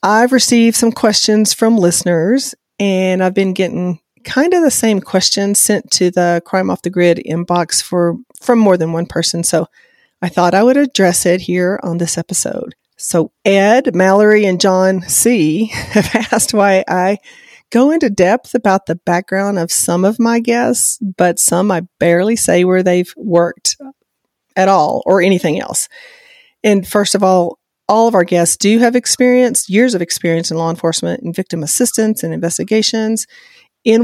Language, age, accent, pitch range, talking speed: English, 40-59, American, 175-225 Hz, 170 wpm